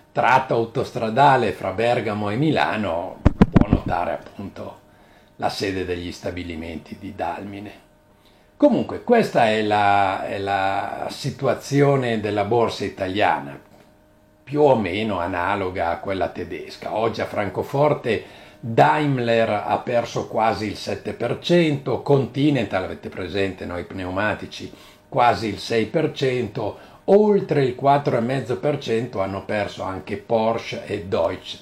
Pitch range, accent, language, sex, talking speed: 100-125 Hz, native, Italian, male, 110 wpm